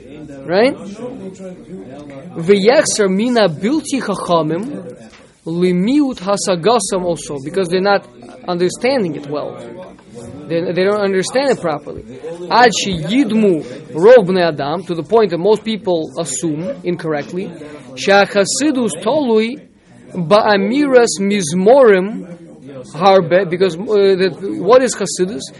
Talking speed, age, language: 65 wpm, 20-39, English